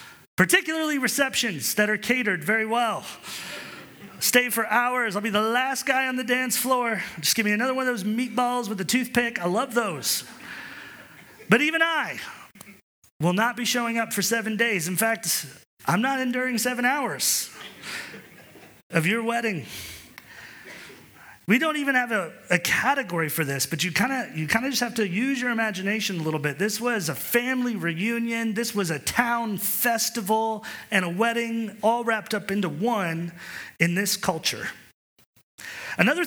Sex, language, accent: male, English, American